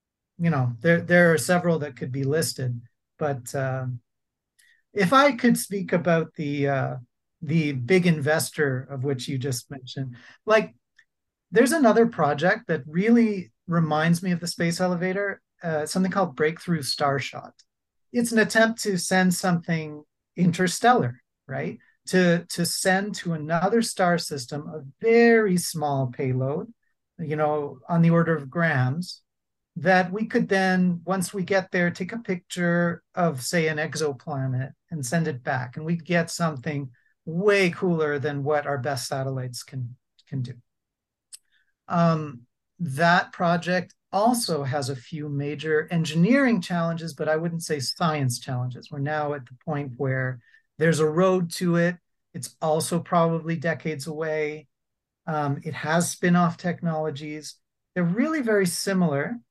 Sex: male